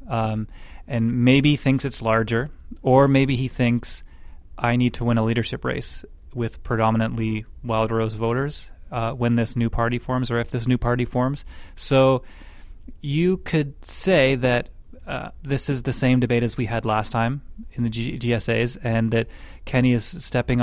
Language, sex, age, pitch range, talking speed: English, male, 30-49, 115-130 Hz, 170 wpm